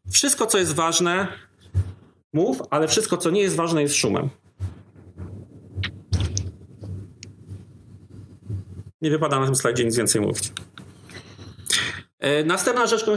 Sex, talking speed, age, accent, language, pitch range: male, 110 wpm, 40-59, native, Polish, 115-190 Hz